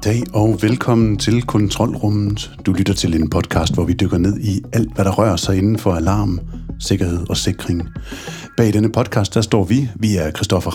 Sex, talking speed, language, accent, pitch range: male, 195 wpm, Danish, native, 90-110 Hz